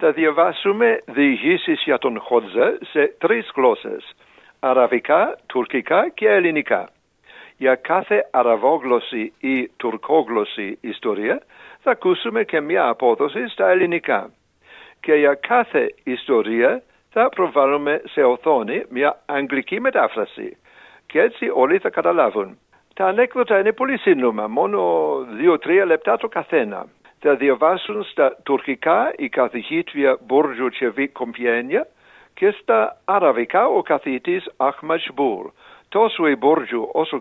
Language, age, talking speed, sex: Greek, 60-79, 115 wpm, male